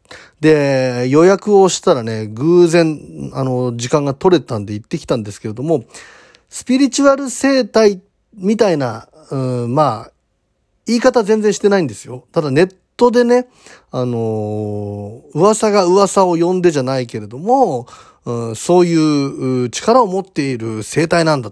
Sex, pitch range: male, 125-190 Hz